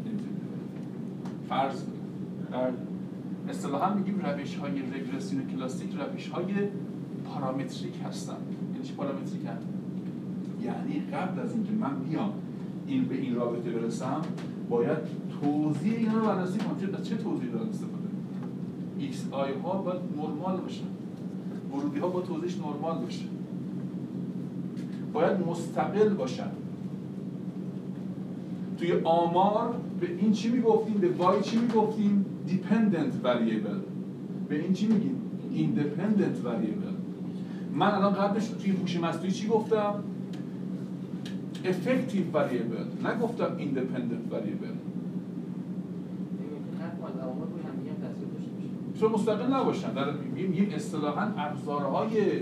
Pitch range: 165-210 Hz